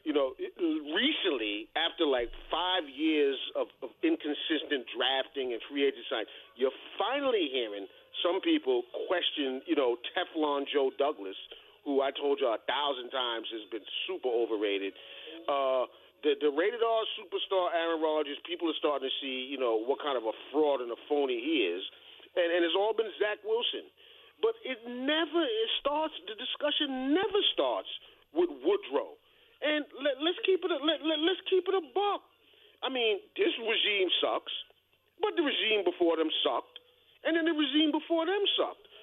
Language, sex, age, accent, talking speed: English, male, 40-59, American, 170 wpm